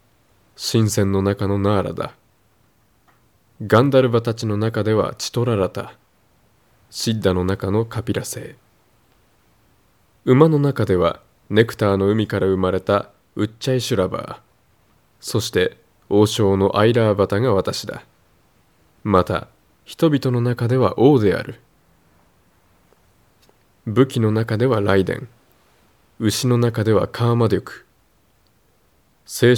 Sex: male